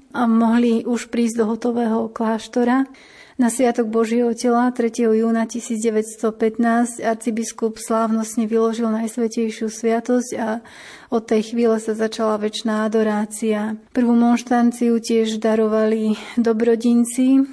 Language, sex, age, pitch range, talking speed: Slovak, female, 30-49, 220-235 Hz, 110 wpm